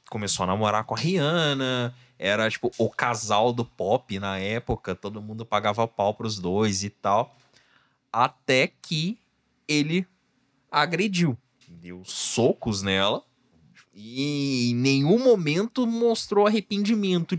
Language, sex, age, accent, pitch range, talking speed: Portuguese, male, 20-39, Brazilian, 120-150 Hz, 120 wpm